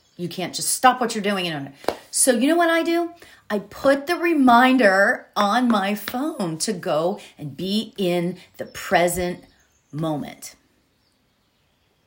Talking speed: 140 wpm